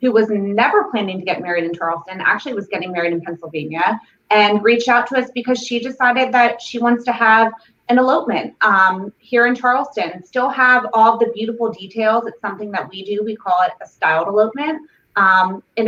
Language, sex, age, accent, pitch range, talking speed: English, female, 20-39, American, 195-235 Hz, 200 wpm